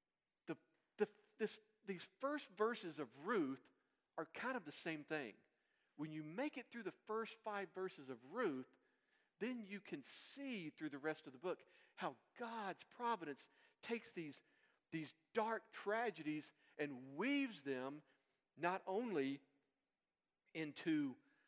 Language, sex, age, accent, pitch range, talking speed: English, male, 50-69, American, 145-230 Hz, 130 wpm